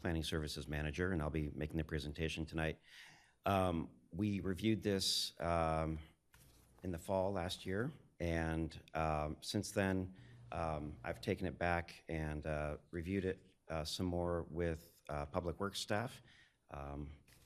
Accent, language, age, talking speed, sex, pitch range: American, English, 40-59, 145 wpm, male, 80-100 Hz